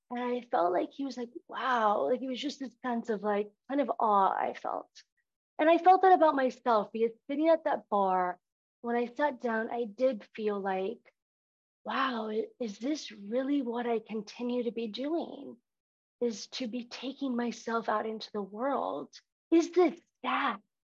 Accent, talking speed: American, 180 wpm